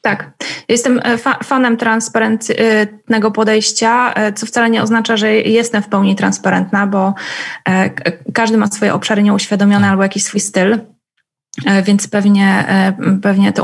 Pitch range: 205-230 Hz